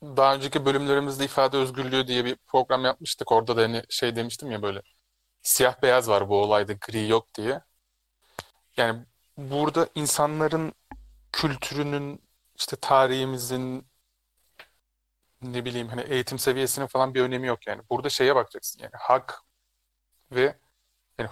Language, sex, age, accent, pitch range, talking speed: Turkish, male, 30-49, native, 100-130 Hz, 130 wpm